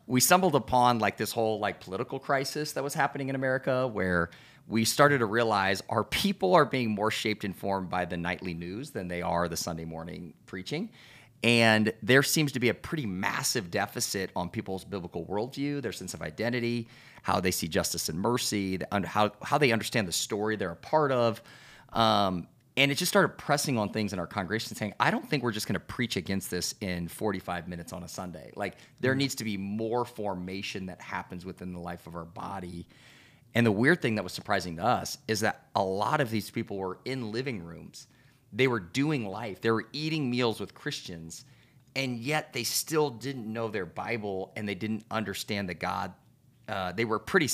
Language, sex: English, male